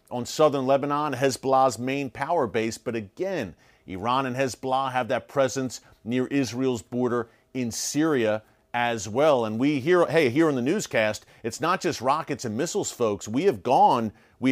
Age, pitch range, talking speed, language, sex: 40-59, 120-145 Hz, 170 wpm, English, male